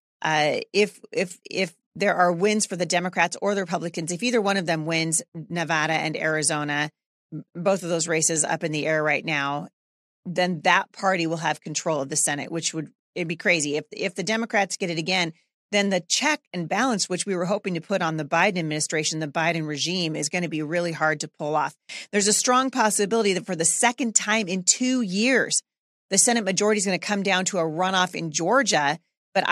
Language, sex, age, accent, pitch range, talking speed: English, female, 40-59, American, 165-205 Hz, 210 wpm